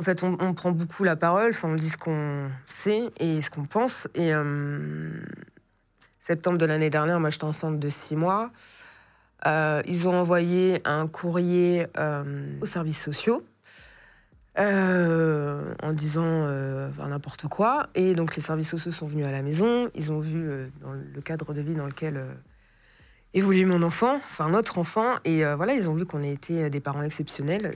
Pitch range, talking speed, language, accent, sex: 145-180 Hz, 190 wpm, French, French, female